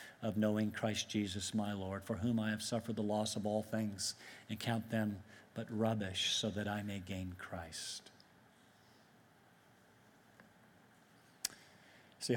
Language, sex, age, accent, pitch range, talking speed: English, male, 50-69, American, 105-120 Hz, 135 wpm